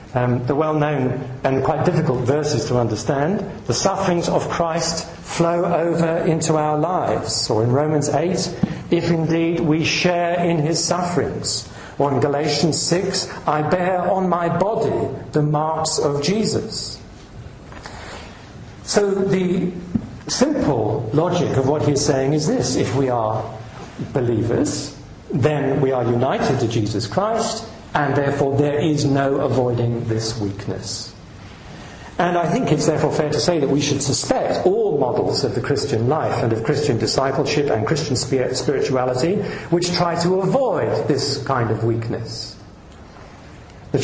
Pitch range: 125-170 Hz